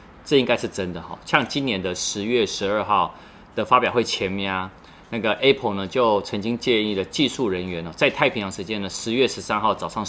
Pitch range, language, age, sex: 90-115 Hz, Chinese, 30-49, male